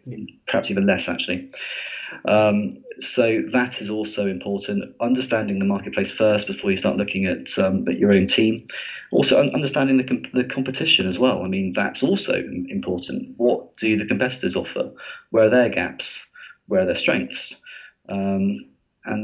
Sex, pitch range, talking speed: male, 100-120 Hz, 160 wpm